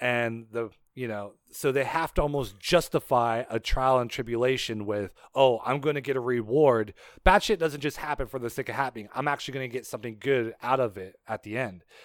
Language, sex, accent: English, male, American